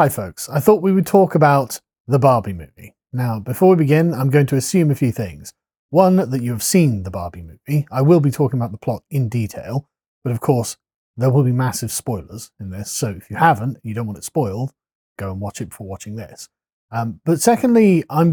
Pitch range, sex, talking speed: 115-160 Hz, male, 225 wpm